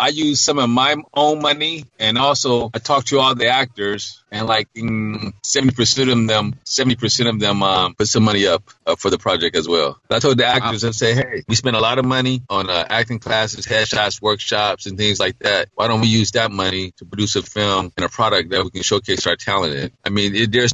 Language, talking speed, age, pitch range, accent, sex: English, 235 wpm, 40-59, 100-125 Hz, American, male